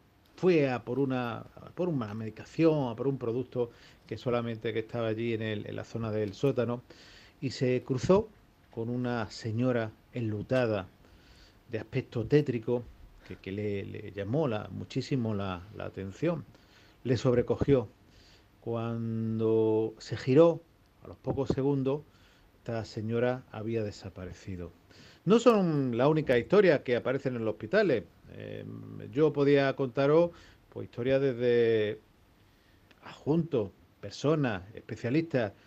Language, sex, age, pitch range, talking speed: Spanish, male, 40-59, 105-135 Hz, 125 wpm